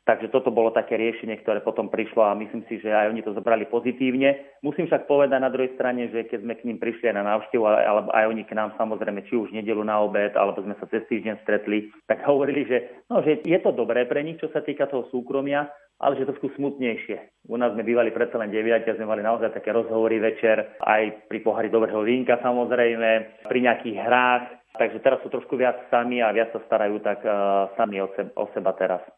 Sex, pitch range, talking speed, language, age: male, 105-125 Hz, 225 wpm, Slovak, 30-49